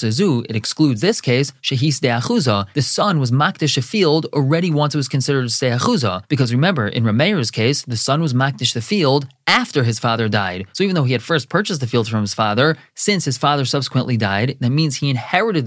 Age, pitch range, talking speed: 20-39, 120-155 Hz, 210 wpm